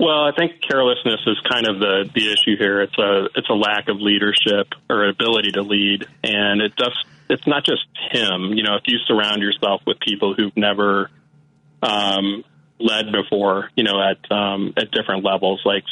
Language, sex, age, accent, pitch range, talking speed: English, male, 30-49, American, 100-110 Hz, 190 wpm